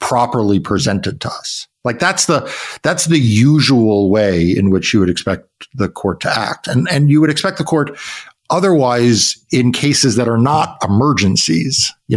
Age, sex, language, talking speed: 50-69, male, English, 175 wpm